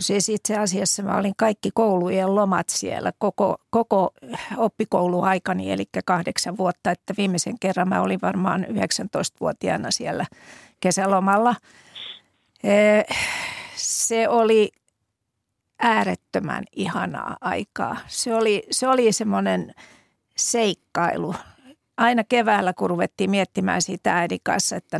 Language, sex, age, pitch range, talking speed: Finnish, female, 50-69, 190-225 Hz, 105 wpm